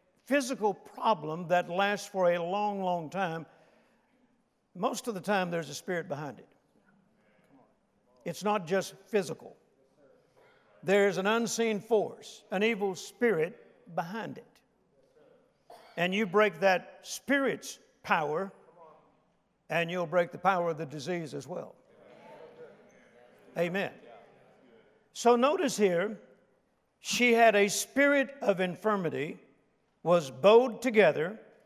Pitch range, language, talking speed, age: 185-230 Hz, English, 115 wpm, 60-79